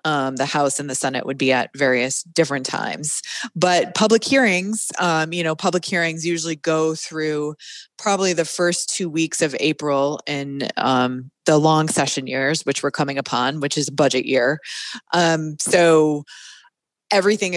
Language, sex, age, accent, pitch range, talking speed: English, female, 20-39, American, 140-170 Hz, 160 wpm